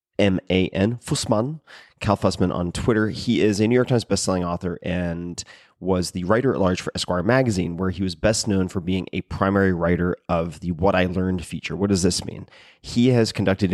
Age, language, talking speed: 30-49, English, 200 wpm